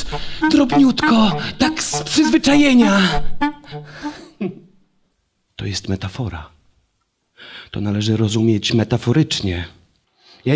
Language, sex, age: Polish, male, 30-49